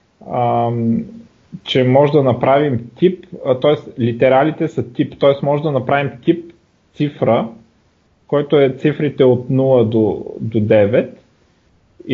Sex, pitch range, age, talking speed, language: male, 125-155 Hz, 30-49, 115 wpm, Bulgarian